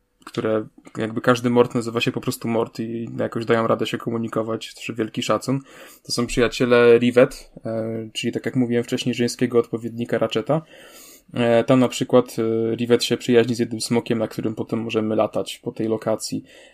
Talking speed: 170 wpm